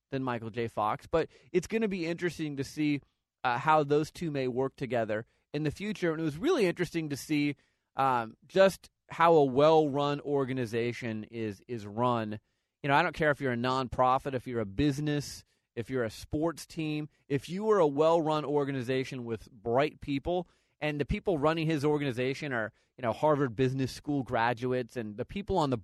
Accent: American